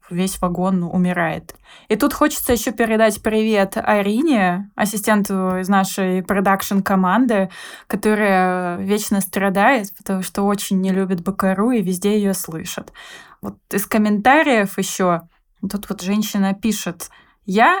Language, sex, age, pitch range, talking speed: Russian, female, 20-39, 185-220 Hz, 125 wpm